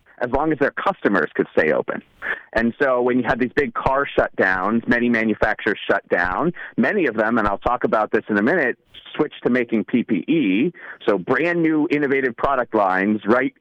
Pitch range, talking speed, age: 125-170 Hz, 190 wpm, 40-59